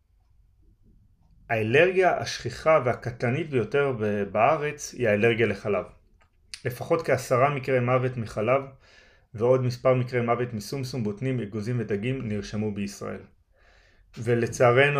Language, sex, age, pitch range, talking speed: Hebrew, male, 30-49, 100-130 Hz, 95 wpm